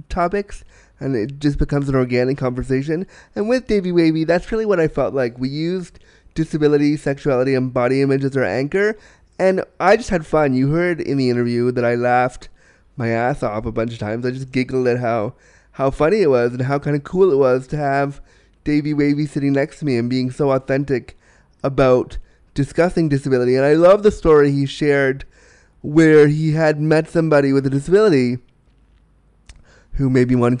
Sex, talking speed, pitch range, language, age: male, 190 wpm, 130-155 Hz, English, 20-39